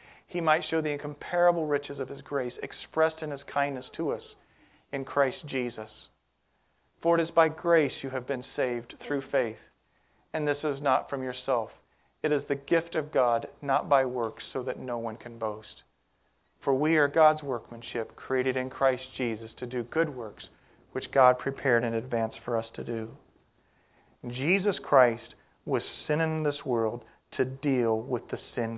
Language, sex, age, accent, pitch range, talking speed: English, male, 40-59, American, 120-150 Hz, 175 wpm